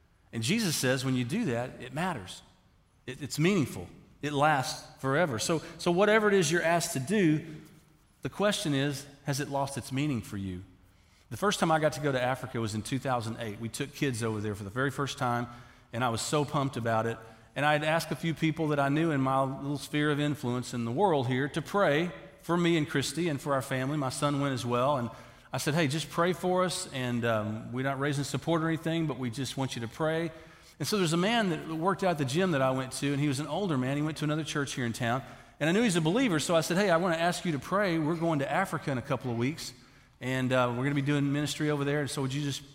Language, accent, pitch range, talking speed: English, American, 125-165 Hz, 270 wpm